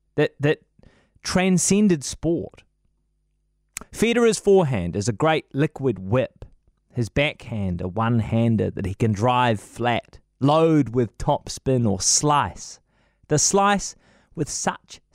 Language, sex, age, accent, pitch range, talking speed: English, male, 30-49, Australian, 110-160 Hz, 115 wpm